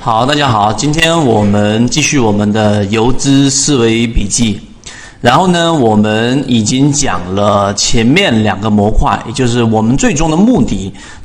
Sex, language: male, Chinese